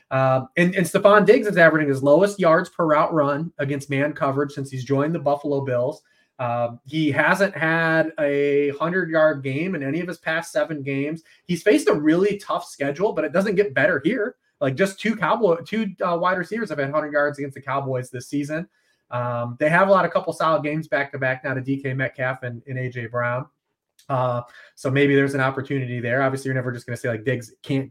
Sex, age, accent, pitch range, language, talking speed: male, 20-39, American, 125-155 Hz, English, 220 wpm